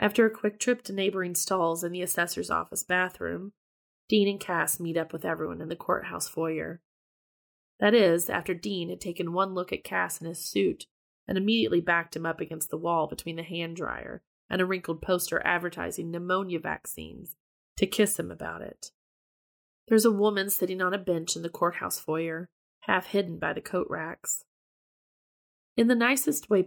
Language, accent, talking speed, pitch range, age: English, American, 180 wpm, 165-195 Hz, 30-49